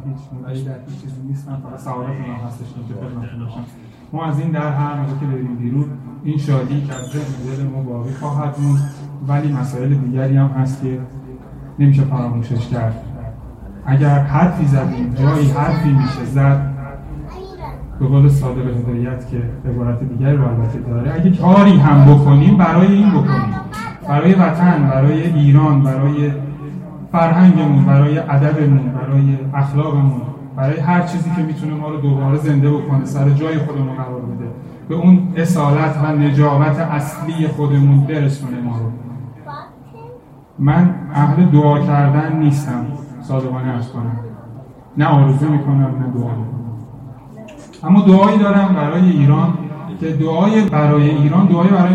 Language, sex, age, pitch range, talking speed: Persian, male, 30-49, 130-155 Hz, 140 wpm